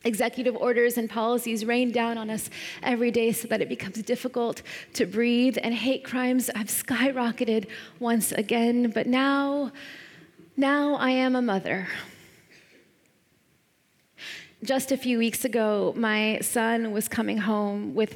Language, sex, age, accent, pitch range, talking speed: English, female, 20-39, American, 210-255 Hz, 140 wpm